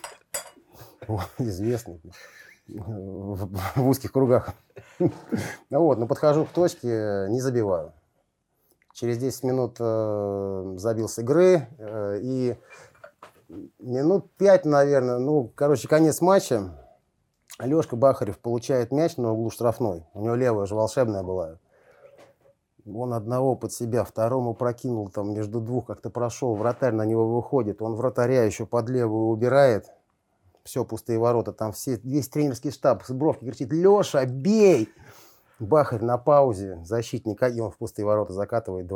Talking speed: 130 wpm